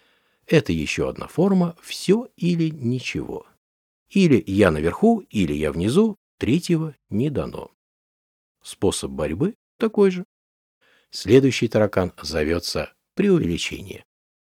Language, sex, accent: Russian, male, native